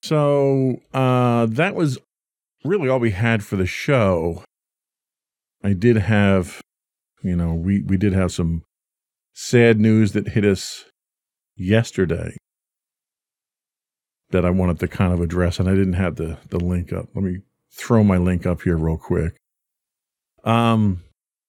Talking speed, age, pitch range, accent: 145 wpm, 40-59, 90-120 Hz, American